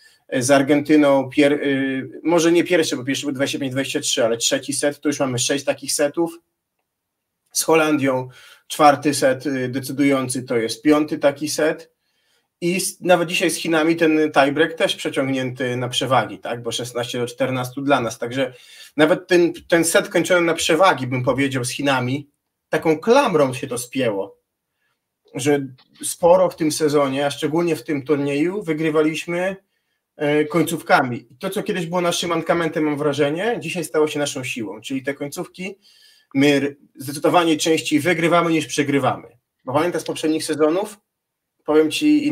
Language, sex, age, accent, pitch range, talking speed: Polish, male, 30-49, native, 140-170 Hz, 145 wpm